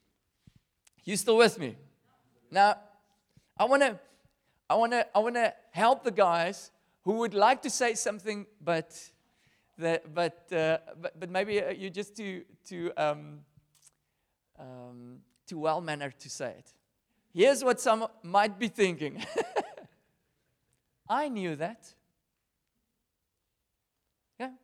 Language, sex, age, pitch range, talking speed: English, male, 40-59, 145-215 Hz, 120 wpm